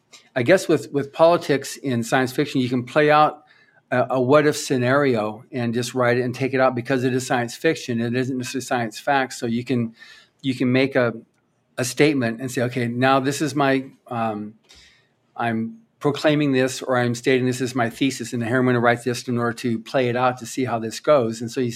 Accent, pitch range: American, 120-135 Hz